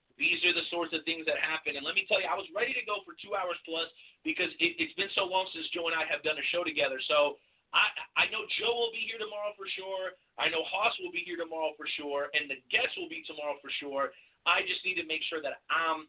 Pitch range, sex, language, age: 150-195 Hz, male, English, 30-49